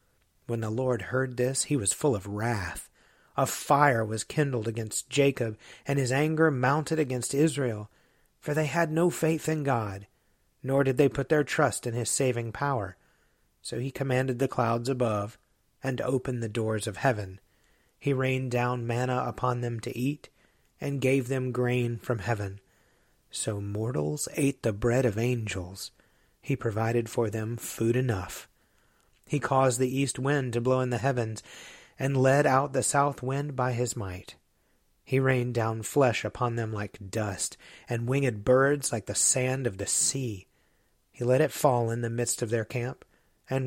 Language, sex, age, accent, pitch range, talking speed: English, male, 30-49, American, 110-135 Hz, 170 wpm